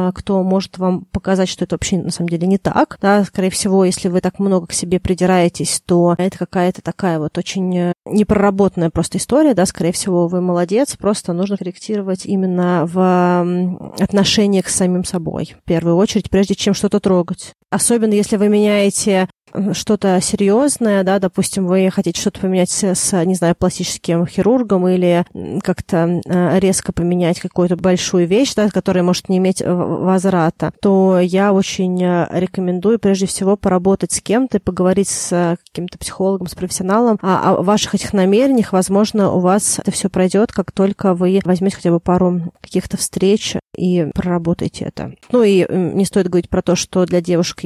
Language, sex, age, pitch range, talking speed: Russian, female, 20-39, 175-195 Hz, 165 wpm